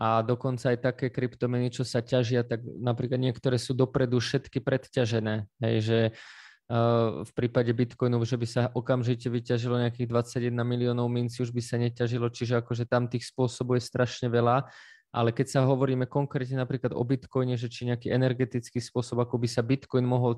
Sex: male